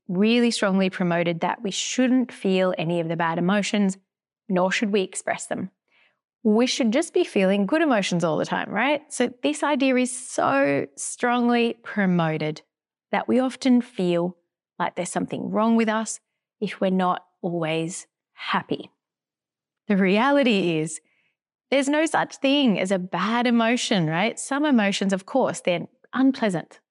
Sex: female